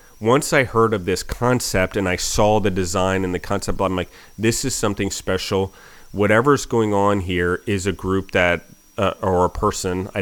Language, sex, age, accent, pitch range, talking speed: English, male, 30-49, American, 90-105 Hz, 195 wpm